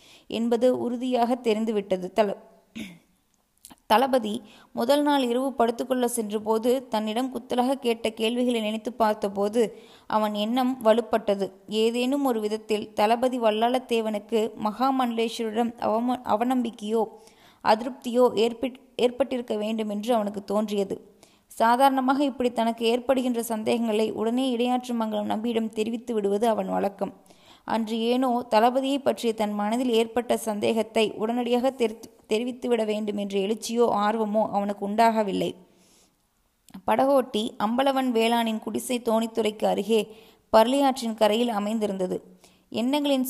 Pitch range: 215-245 Hz